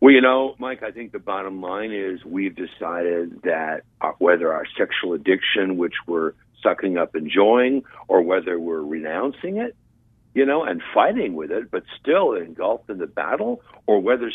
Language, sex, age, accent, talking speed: English, male, 60-79, American, 170 wpm